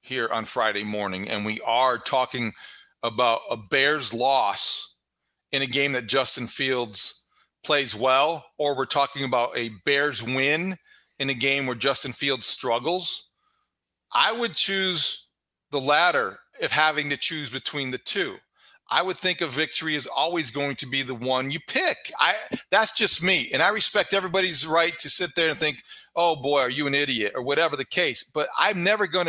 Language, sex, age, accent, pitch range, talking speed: English, male, 40-59, American, 140-200 Hz, 180 wpm